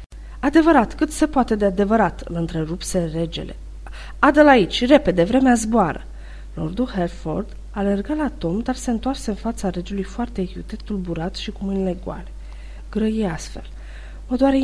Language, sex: Romanian, female